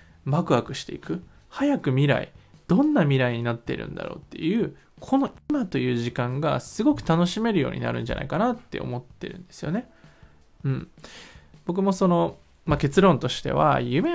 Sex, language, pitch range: male, Japanese, 135-225 Hz